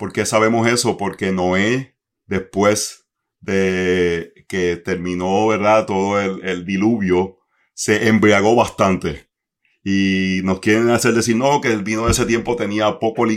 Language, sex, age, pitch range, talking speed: Spanish, male, 40-59, 95-120 Hz, 145 wpm